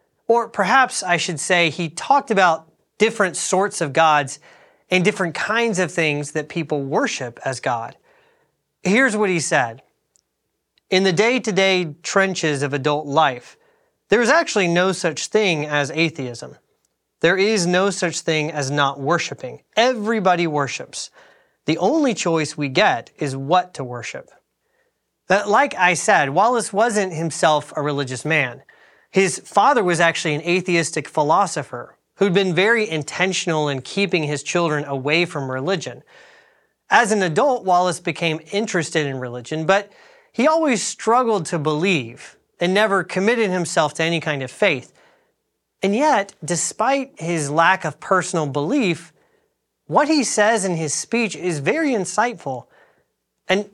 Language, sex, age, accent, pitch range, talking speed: English, male, 30-49, American, 155-210 Hz, 145 wpm